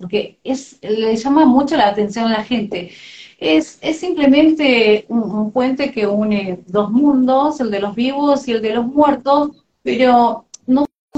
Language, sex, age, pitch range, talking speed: Spanish, female, 30-49, 205-265 Hz, 165 wpm